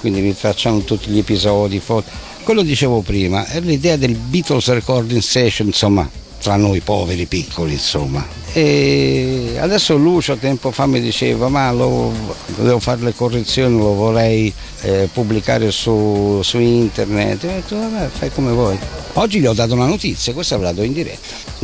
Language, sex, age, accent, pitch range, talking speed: Italian, male, 60-79, native, 95-125 Hz, 170 wpm